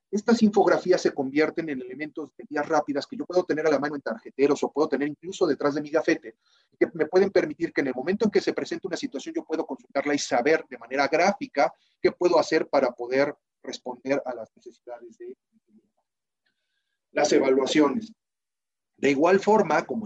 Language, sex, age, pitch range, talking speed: Spanish, male, 40-59, 140-195 Hz, 190 wpm